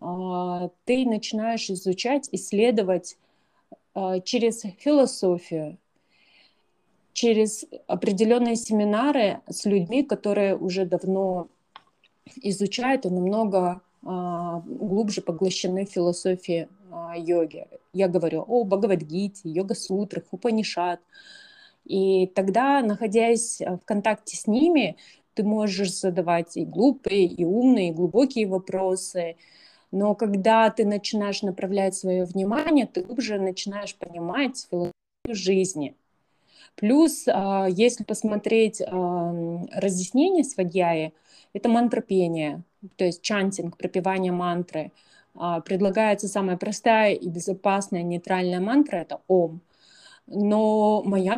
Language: Russian